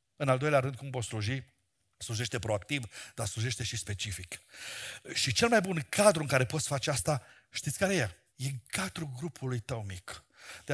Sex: male